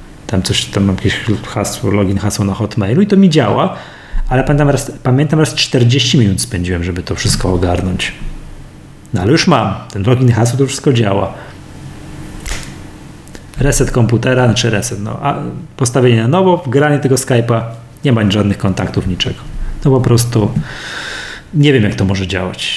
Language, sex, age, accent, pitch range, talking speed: Polish, male, 30-49, native, 105-135 Hz, 165 wpm